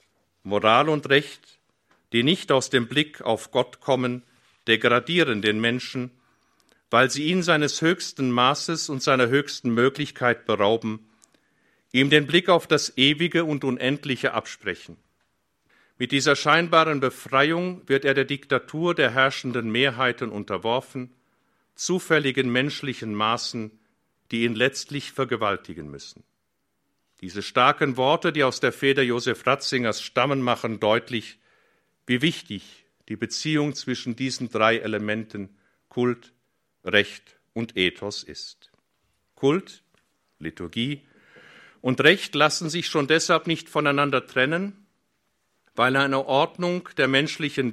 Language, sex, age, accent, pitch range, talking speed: German, male, 50-69, German, 120-150 Hz, 120 wpm